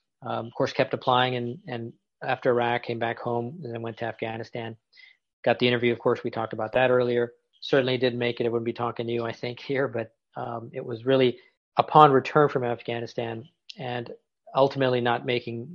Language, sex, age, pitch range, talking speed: English, male, 40-59, 120-140 Hz, 200 wpm